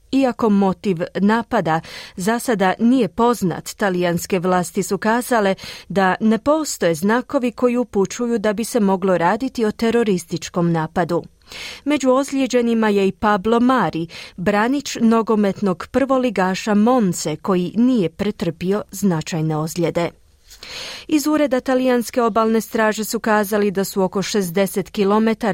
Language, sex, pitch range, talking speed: Croatian, female, 185-245 Hz, 120 wpm